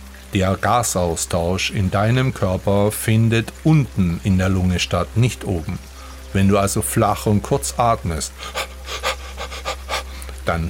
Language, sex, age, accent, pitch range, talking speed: German, male, 50-69, German, 80-115 Hz, 120 wpm